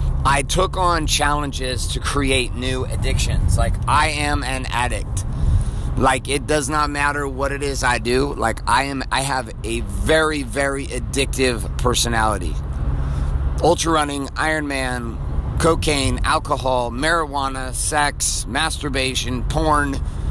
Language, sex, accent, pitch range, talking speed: English, male, American, 105-140 Hz, 125 wpm